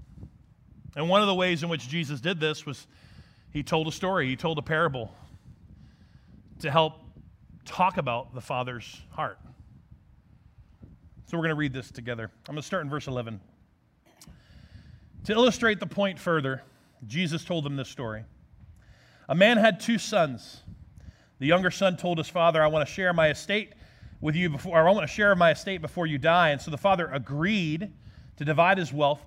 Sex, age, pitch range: male, 30-49, 130-190 Hz